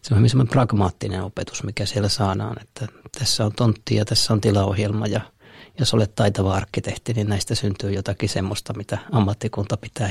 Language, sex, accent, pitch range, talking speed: Finnish, male, native, 100-115 Hz, 160 wpm